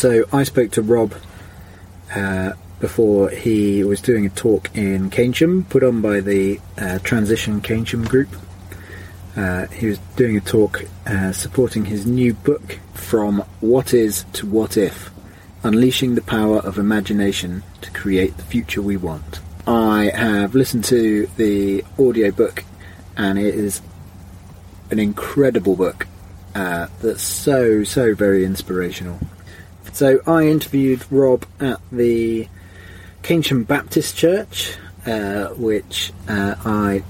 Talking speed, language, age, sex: 135 wpm, English, 30-49, male